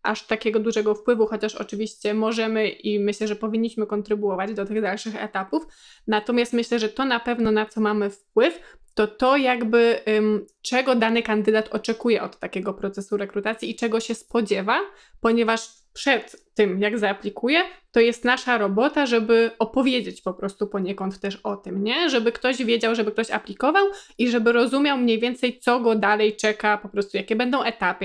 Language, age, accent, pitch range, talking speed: Polish, 20-39, native, 205-235 Hz, 170 wpm